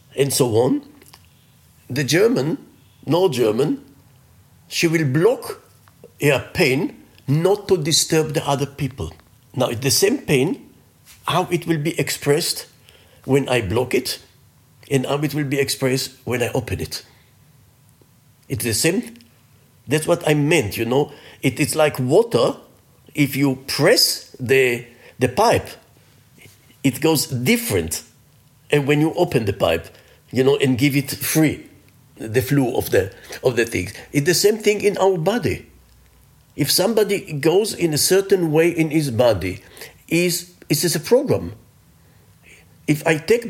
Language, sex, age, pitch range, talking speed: German, male, 50-69, 125-165 Hz, 150 wpm